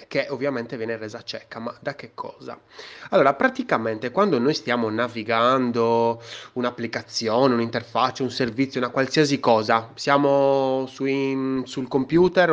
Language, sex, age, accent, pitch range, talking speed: Italian, male, 20-39, native, 110-140 Hz, 125 wpm